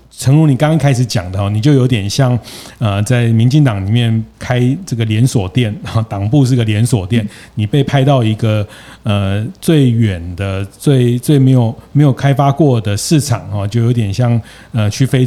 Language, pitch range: Chinese, 115-140 Hz